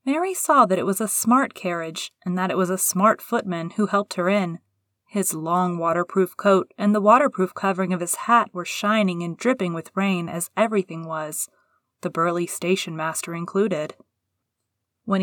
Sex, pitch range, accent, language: female, 175-210 Hz, American, English